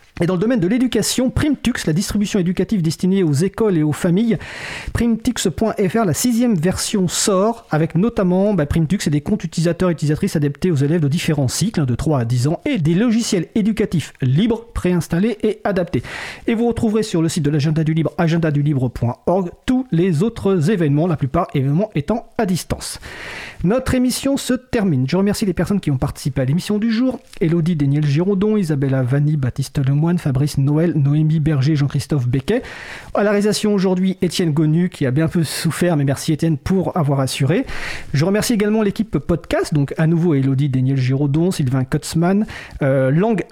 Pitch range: 150-210 Hz